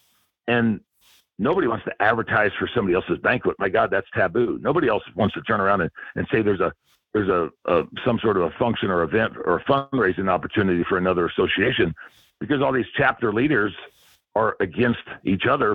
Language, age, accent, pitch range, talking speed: English, 50-69, American, 110-130 Hz, 190 wpm